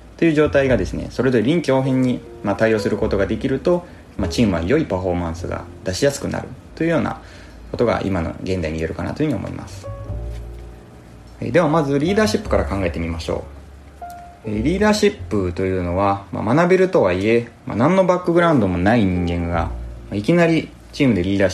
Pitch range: 90-135 Hz